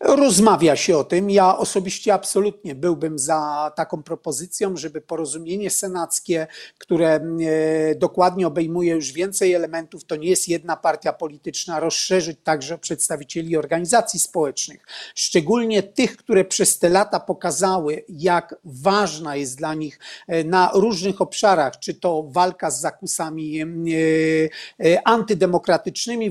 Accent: native